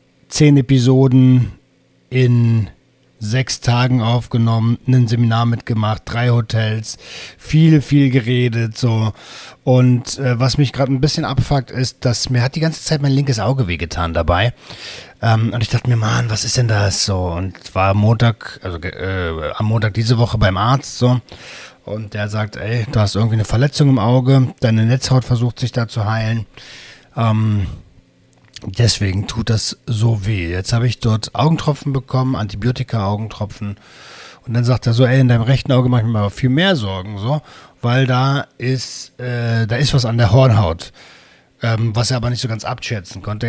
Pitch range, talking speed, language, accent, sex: 110-130 Hz, 175 wpm, German, German, male